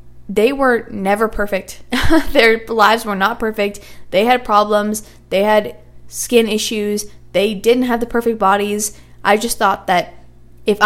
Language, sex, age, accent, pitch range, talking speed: English, female, 10-29, American, 190-225 Hz, 150 wpm